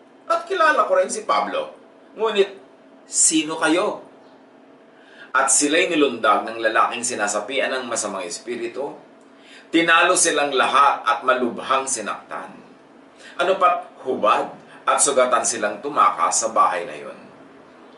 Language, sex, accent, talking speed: English, male, Filipino, 115 wpm